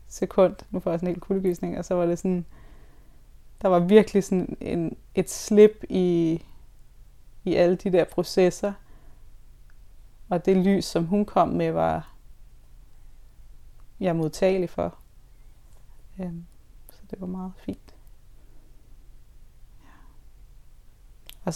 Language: Danish